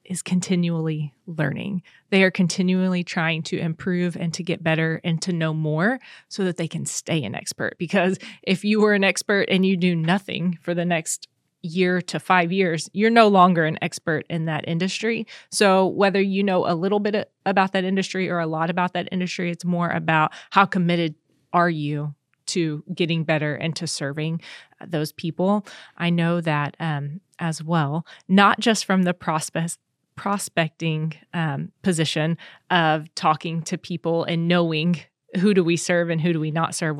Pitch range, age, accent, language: 160-190 Hz, 20-39, American, English